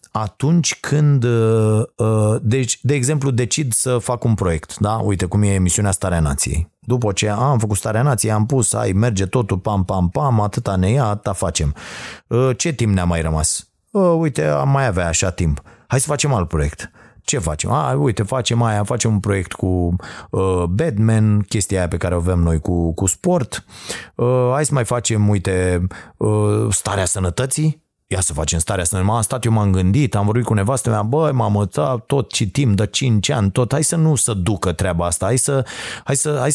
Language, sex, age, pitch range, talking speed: Romanian, male, 30-49, 95-130 Hz, 185 wpm